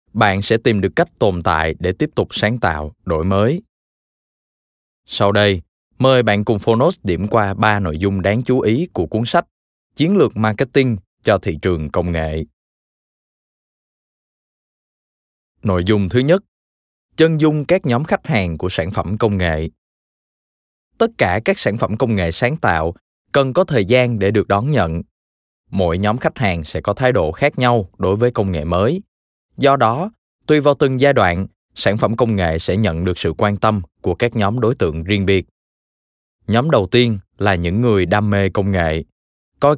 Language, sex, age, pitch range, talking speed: Vietnamese, male, 20-39, 85-120 Hz, 185 wpm